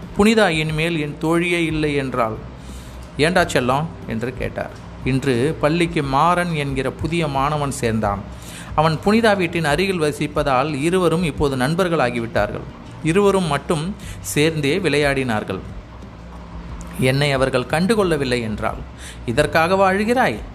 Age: 30-49